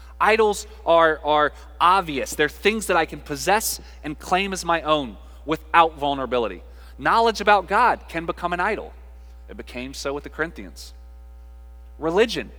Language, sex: English, male